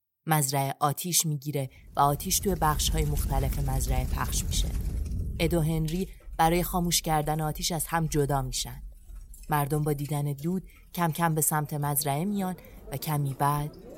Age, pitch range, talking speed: 30-49, 140-175 Hz, 150 wpm